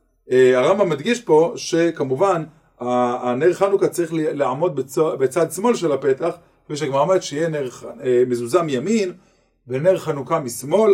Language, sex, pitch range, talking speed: Hebrew, male, 140-190 Hz, 130 wpm